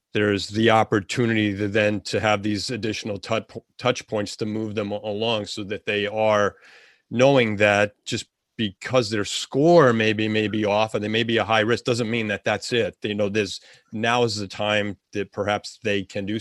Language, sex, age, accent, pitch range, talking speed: English, male, 40-59, American, 105-120 Hz, 195 wpm